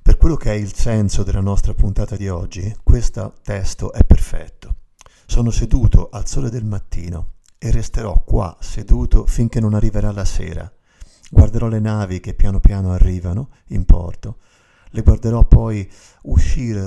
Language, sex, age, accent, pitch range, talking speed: Italian, male, 50-69, native, 90-110 Hz, 155 wpm